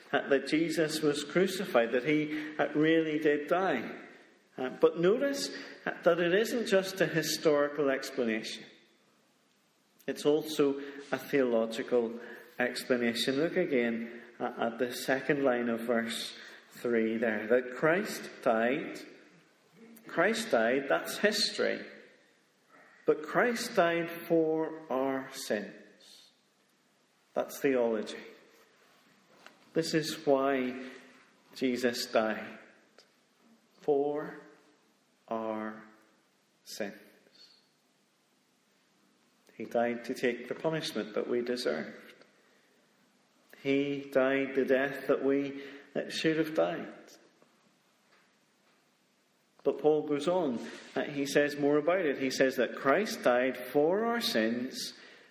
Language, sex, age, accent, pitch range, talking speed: English, male, 40-59, British, 125-155 Hz, 100 wpm